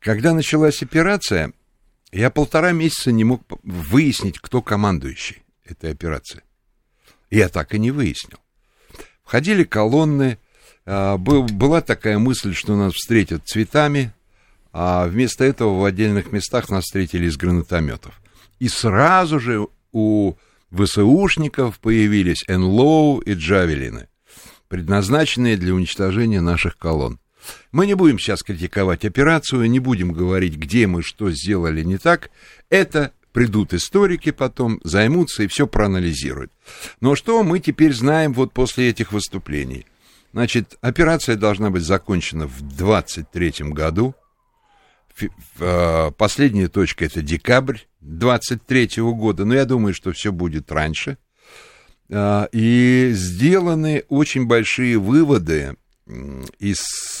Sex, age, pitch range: male, 60-79, 90-130 Hz